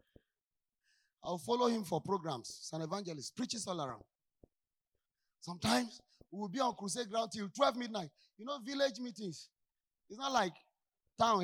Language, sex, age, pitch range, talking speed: English, male, 30-49, 165-230 Hz, 150 wpm